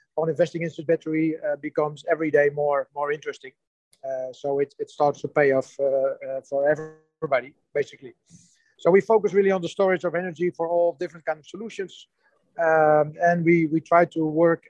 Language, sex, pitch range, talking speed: English, male, 145-170 Hz, 190 wpm